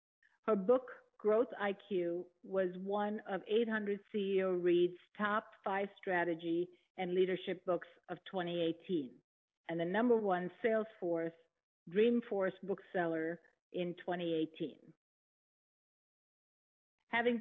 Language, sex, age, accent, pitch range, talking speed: English, female, 50-69, American, 175-215 Hz, 95 wpm